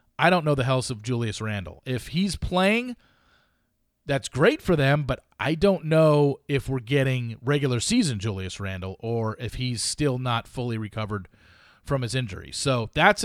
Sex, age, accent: male, 40-59, American